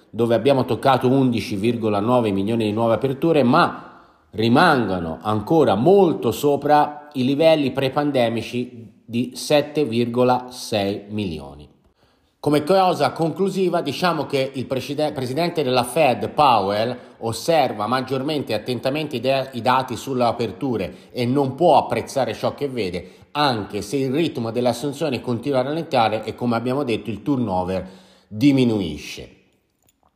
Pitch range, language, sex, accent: 115-145 Hz, Italian, male, native